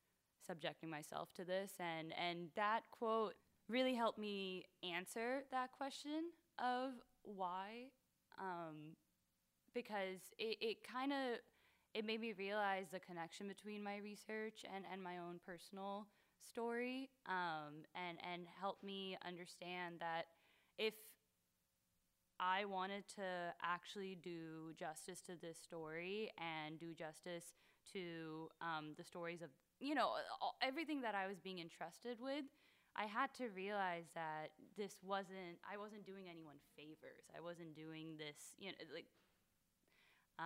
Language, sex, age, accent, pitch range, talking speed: English, female, 10-29, American, 160-205 Hz, 130 wpm